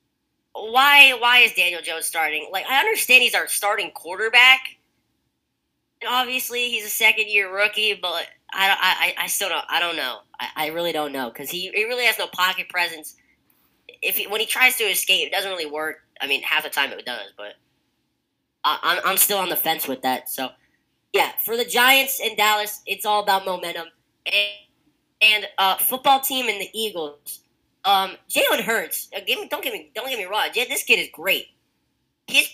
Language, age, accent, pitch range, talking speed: English, 10-29, American, 165-230 Hz, 195 wpm